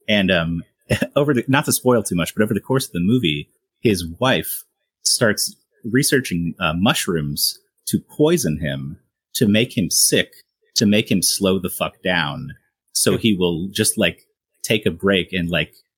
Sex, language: male, English